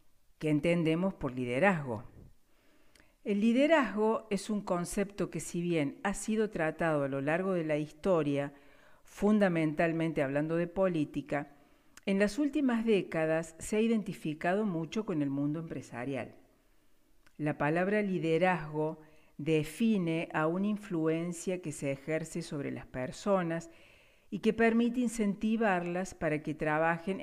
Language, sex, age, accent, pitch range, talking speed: Spanish, female, 50-69, Argentinian, 150-200 Hz, 125 wpm